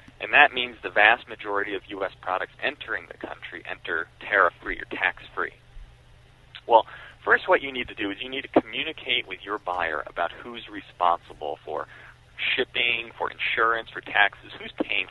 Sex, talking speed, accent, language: male, 165 wpm, American, English